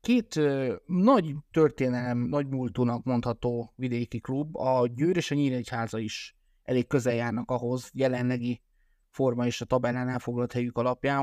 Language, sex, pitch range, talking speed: Hungarian, male, 125-150 Hz, 140 wpm